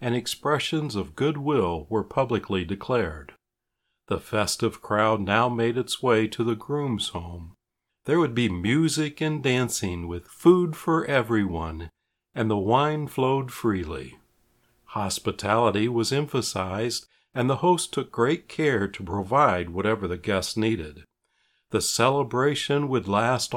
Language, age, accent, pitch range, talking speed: English, 60-79, American, 100-130 Hz, 130 wpm